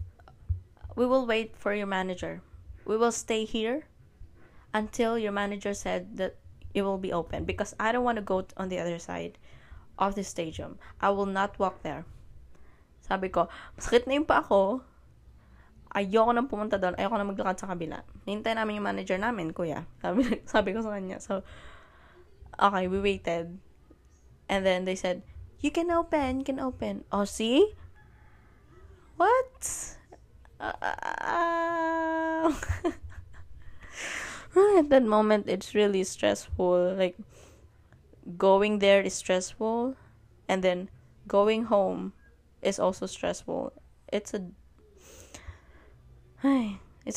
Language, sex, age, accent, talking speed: Filipino, female, 20-39, native, 130 wpm